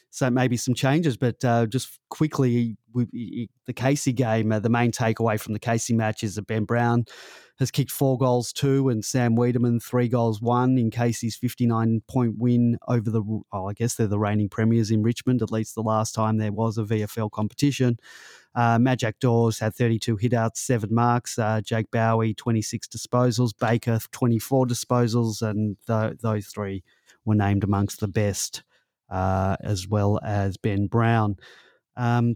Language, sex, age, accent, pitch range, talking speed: English, male, 20-39, Australian, 110-125 Hz, 170 wpm